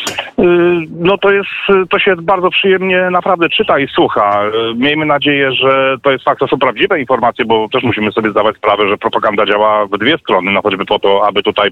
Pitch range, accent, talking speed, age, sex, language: 110-145 Hz, native, 200 wpm, 40-59, male, Polish